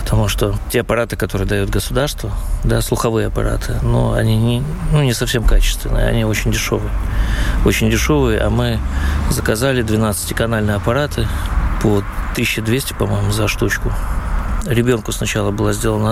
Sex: male